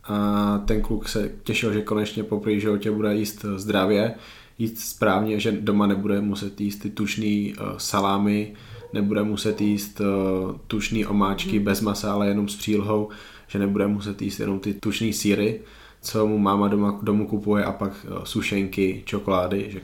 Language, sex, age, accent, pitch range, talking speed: Czech, male, 20-39, native, 95-105 Hz, 155 wpm